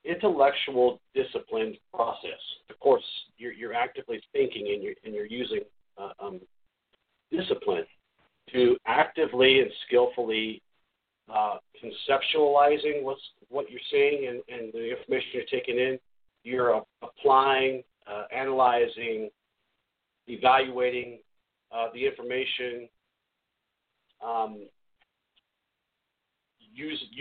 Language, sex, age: English, male, 50-69